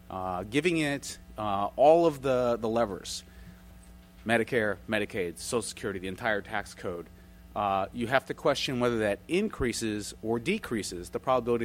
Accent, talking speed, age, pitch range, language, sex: American, 150 wpm, 30-49, 95-120 Hz, English, male